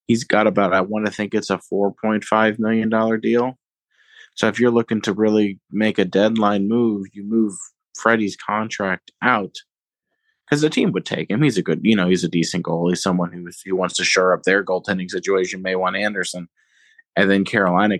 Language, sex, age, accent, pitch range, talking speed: English, male, 20-39, American, 95-110 Hz, 195 wpm